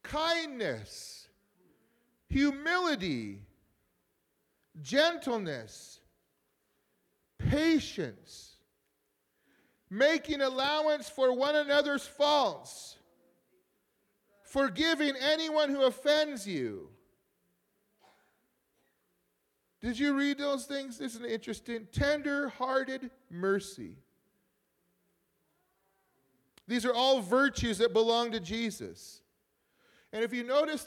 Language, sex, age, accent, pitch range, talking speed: English, male, 40-59, American, 220-285 Hz, 70 wpm